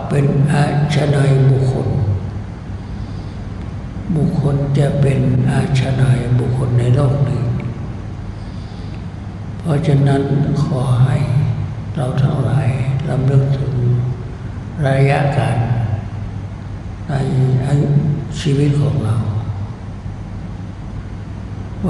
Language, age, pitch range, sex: Thai, 60-79, 105-140 Hz, male